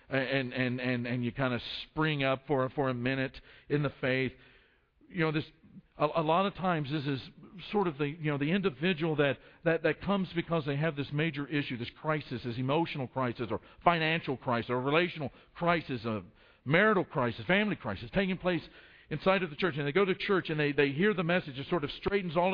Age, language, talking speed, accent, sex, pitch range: 50-69, English, 215 wpm, American, male, 130-200 Hz